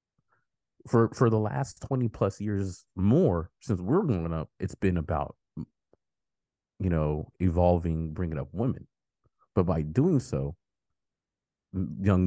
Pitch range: 85-105 Hz